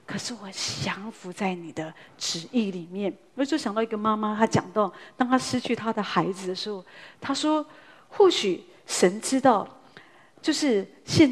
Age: 40-59